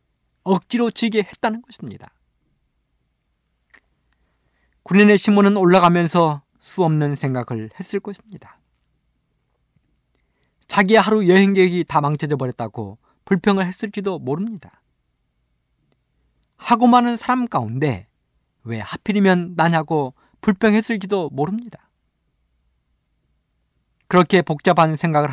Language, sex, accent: Korean, male, native